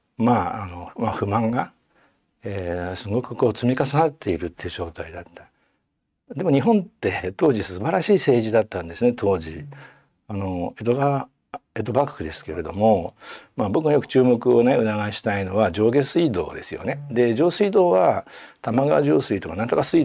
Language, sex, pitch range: Japanese, male, 95-140 Hz